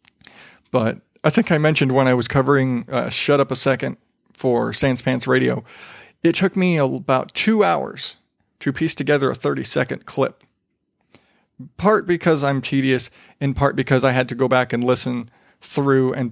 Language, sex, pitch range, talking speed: English, male, 130-150 Hz, 170 wpm